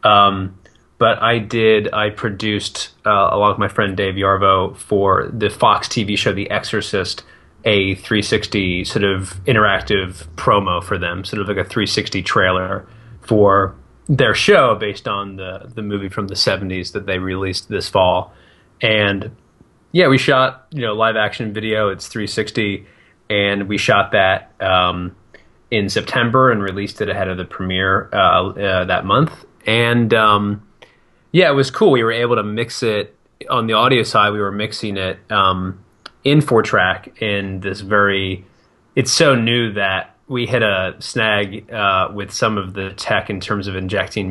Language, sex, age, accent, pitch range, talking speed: English, male, 20-39, American, 95-110 Hz, 170 wpm